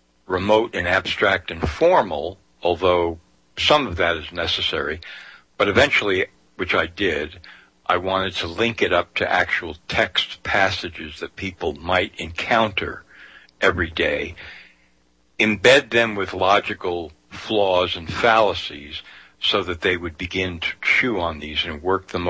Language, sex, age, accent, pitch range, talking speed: English, male, 60-79, American, 80-95 Hz, 135 wpm